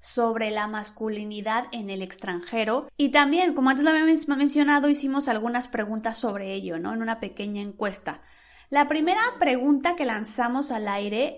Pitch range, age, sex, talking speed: 220-275 Hz, 30-49, female, 165 wpm